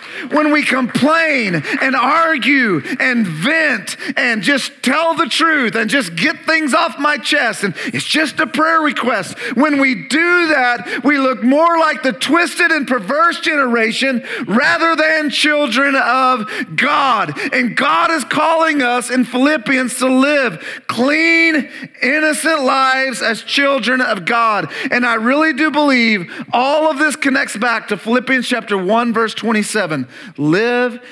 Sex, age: male, 40-59